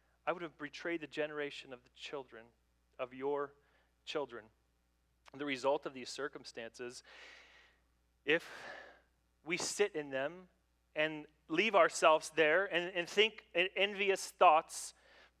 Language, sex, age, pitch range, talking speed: English, male, 30-49, 135-180 Hz, 120 wpm